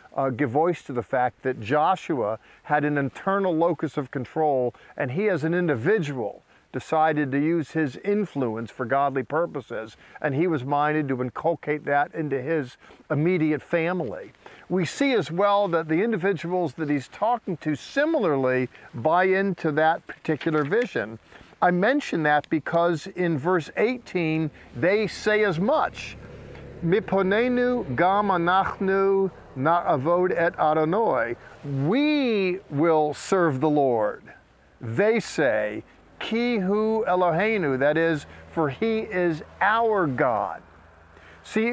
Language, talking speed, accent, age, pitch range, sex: English, 130 wpm, American, 50-69, 150-195 Hz, male